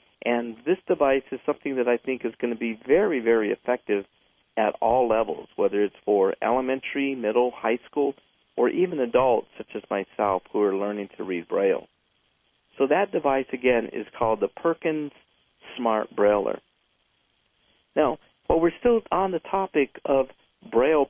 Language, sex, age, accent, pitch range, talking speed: English, male, 50-69, American, 120-155 Hz, 160 wpm